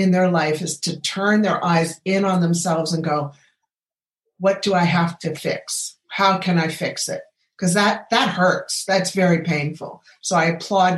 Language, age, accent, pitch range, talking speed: English, 50-69, American, 180-225 Hz, 185 wpm